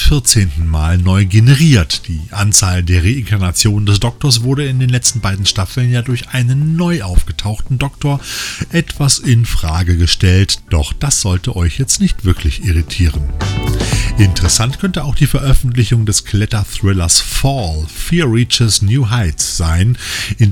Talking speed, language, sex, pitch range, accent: 140 wpm, German, male, 90-130 Hz, German